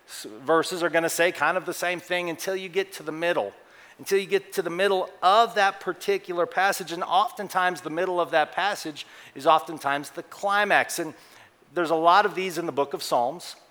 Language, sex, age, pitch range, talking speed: English, male, 40-59, 155-190 Hz, 210 wpm